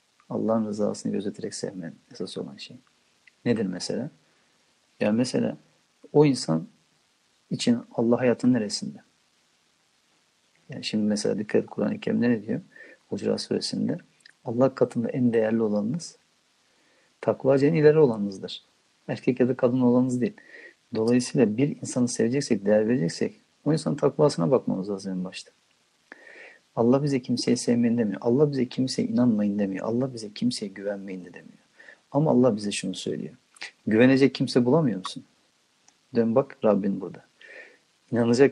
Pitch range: 115-145 Hz